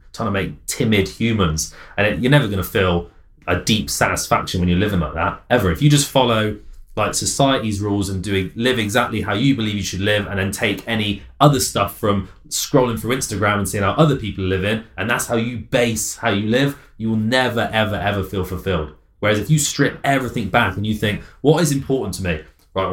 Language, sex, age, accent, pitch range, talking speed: English, male, 20-39, British, 100-125 Hz, 220 wpm